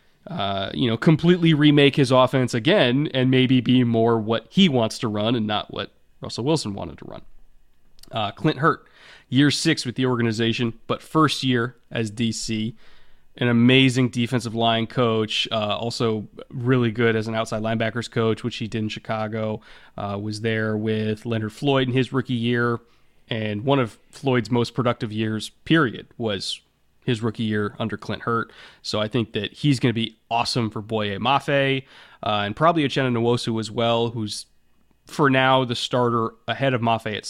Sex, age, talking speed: male, 20-39, 175 wpm